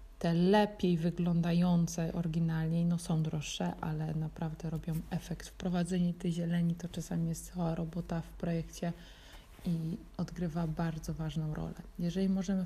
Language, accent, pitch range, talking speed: Polish, native, 165-185 Hz, 135 wpm